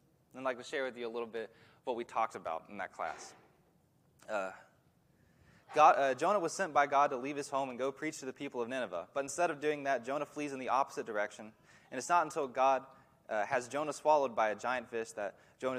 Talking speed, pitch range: 235 wpm, 125-155 Hz